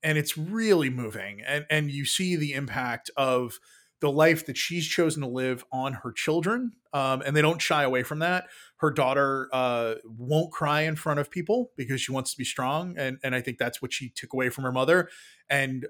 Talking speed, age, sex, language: 215 wpm, 20-39, male, English